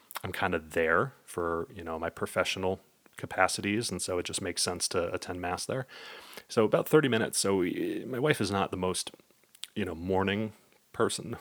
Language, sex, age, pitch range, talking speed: English, male, 30-49, 85-100 Hz, 185 wpm